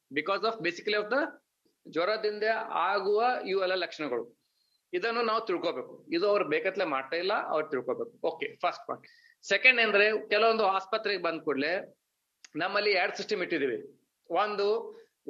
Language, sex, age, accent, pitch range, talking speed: English, male, 30-49, Indian, 160-215 Hz, 170 wpm